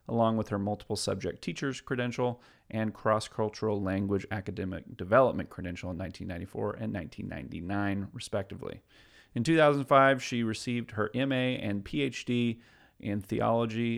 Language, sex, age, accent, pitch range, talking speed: English, male, 40-59, American, 100-125 Hz, 120 wpm